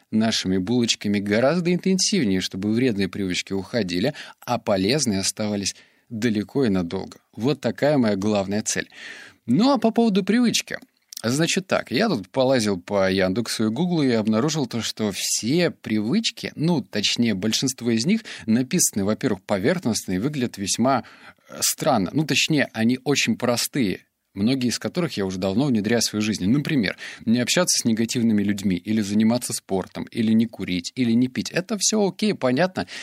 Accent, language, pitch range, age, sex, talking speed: native, Russian, 105-170 Hz, 30-49, male, 155 wpm